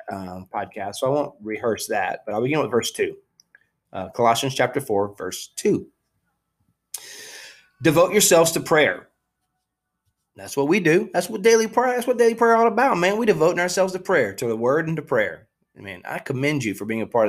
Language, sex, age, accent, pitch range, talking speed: English, male, 20-39, American, 105-145 Hz, 200 wpm